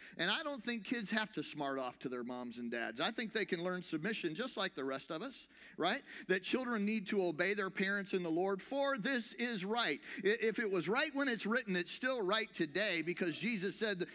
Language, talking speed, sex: English, 235 wpm, male